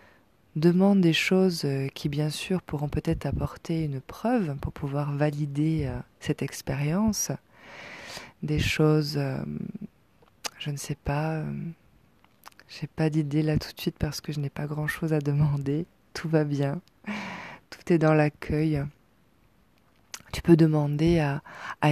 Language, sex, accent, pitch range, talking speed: French, female, French, 140-160 Hz, 140 wpm